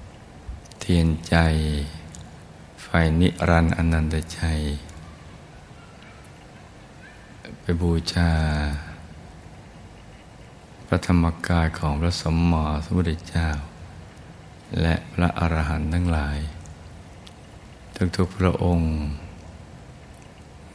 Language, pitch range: Thai, 80-90 Hz